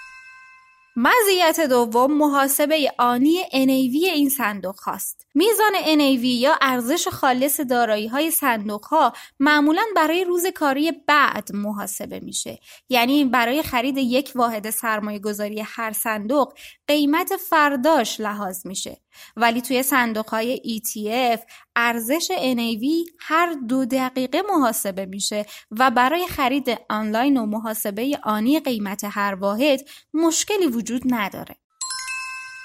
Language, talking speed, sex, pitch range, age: Persian, 115 wpm, female, 220-300 Hz, 20-39